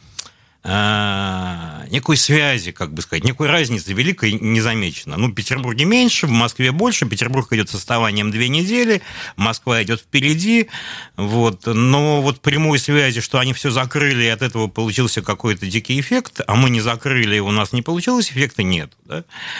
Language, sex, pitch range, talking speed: Russian, male, 100-140 Hz, 165 wpm